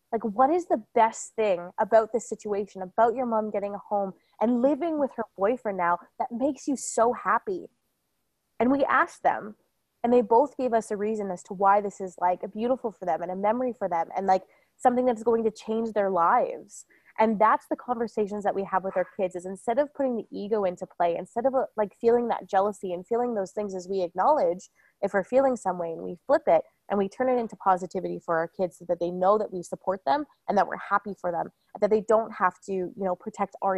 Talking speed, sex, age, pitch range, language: 235 wpm, female, 20-39, 180-230 Hz, English